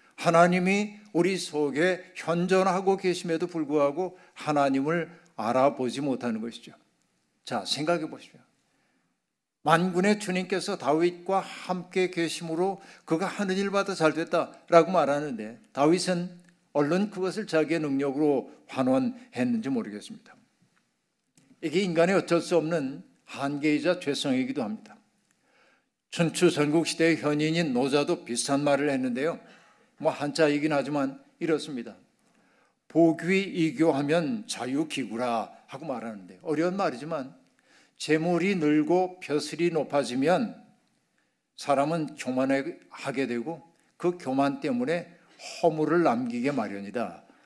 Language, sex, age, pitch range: Korean, male, 60-79, 150-185 Hz